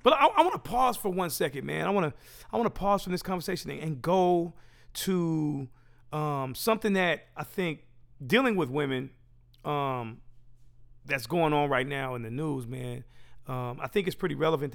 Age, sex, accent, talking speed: 40-59, male, American, 195 wpm